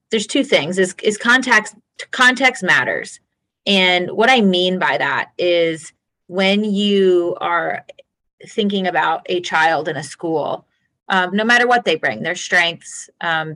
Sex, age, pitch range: female, 30-49, 155-195 Hz